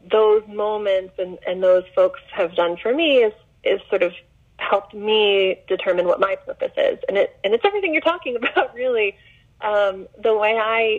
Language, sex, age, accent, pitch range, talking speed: English, female, 30-49, American, 185-245 Hz, 185 wpm